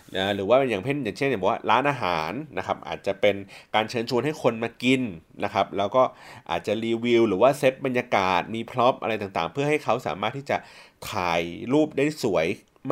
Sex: male